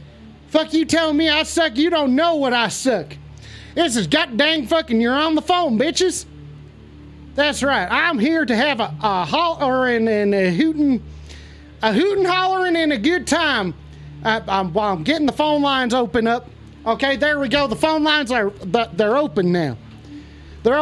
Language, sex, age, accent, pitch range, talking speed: English, male, 30-49, American, 205-300 Hz, 180 wpm